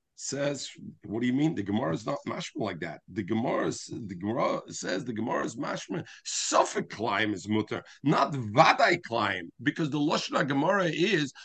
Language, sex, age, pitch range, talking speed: English, male, 50-69, 130-205 Hz, 180 wpm